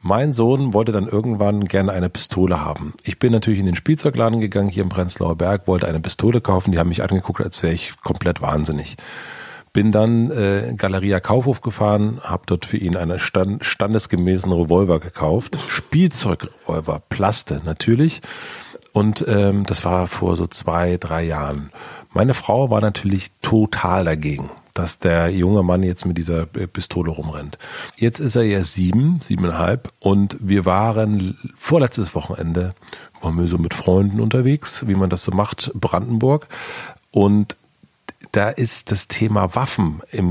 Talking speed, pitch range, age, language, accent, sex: 155 wpm, 90-110 Hz, 40-59, German, German, male